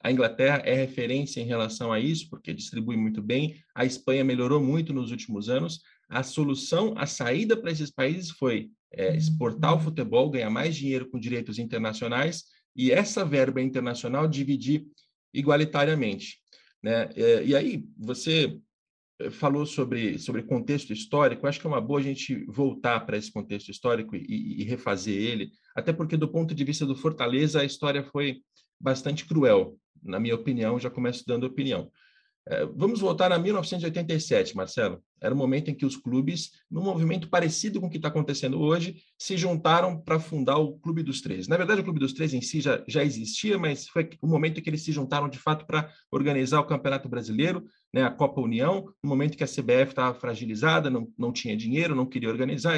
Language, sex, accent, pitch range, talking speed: Portuguese, male, Brazilian, 130-160 Hz, 185 wpm